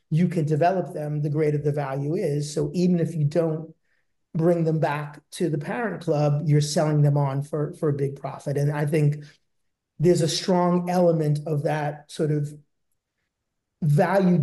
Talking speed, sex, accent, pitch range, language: 175 wpm, male, American, 145-170 Hz, English